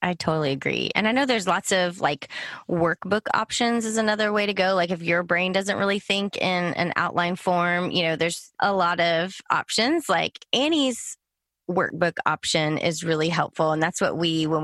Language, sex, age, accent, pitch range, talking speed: English, female, 20-39, American, 160-205 Hz, 195 wpm